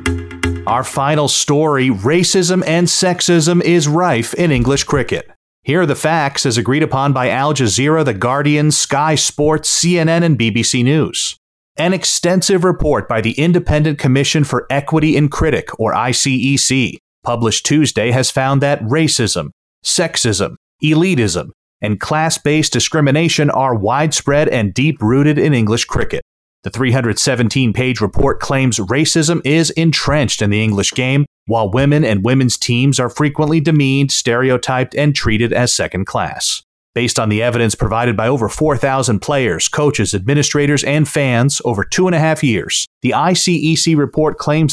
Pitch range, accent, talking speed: 120-155 Hz, American, 145 wpm